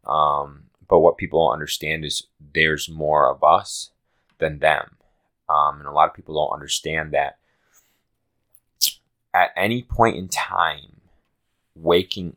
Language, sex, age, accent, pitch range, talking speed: English, male, 20-39, American, 75-95 Hz, 135 wpm